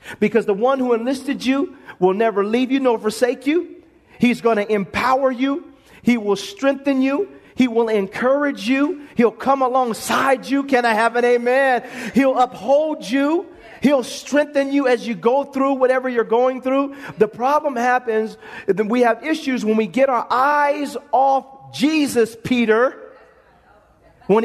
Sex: male